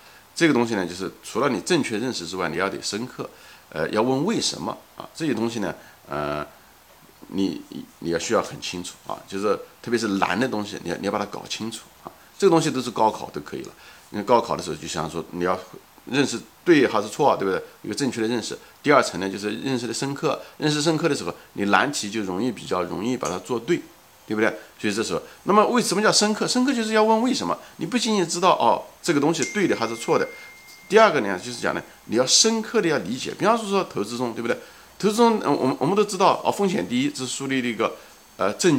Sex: male